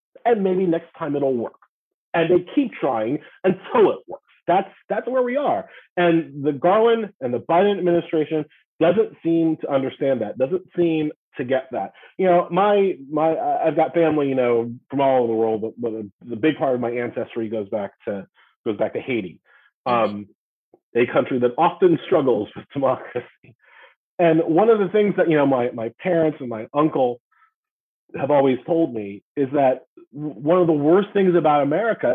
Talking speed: 185 wpm